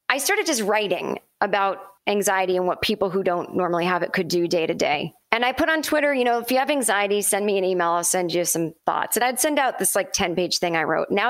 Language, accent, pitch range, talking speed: English, American, 185-235 Hz, 270 wpm